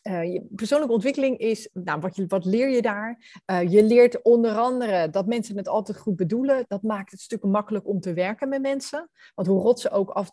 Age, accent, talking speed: 30-49, Dutch, 230 wpm